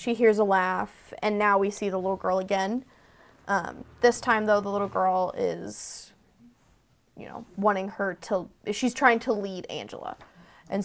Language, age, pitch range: English, 10-29, 190-225 Hz